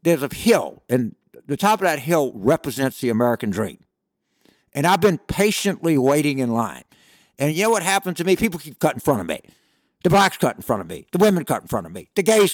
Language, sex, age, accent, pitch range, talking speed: English, male, 60-79, American, 145-195 Hz, 240 wpm